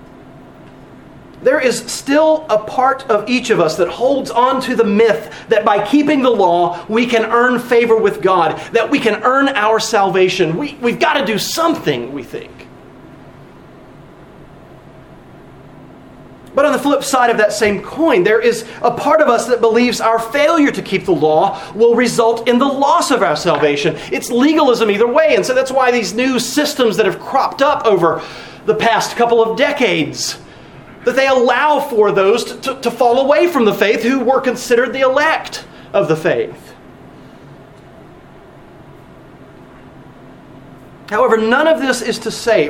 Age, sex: 40-59, male